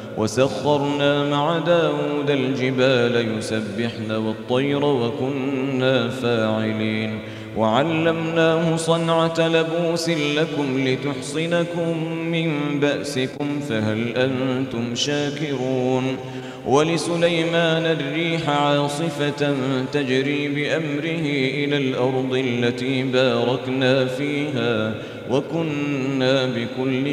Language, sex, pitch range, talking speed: Arabic, male, 125-165 Hz, 65 wpm